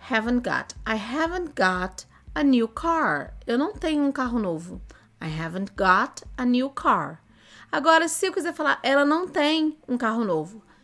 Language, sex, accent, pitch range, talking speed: Portuguese, female, Brazilian, 200-280 Hz, 170 wpm